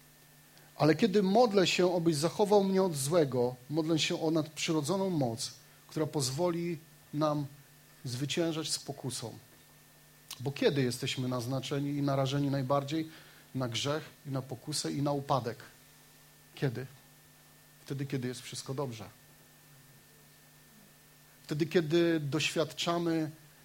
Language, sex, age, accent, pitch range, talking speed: Polish, male, 30-49, native, 135-160 Hz, 110 wpm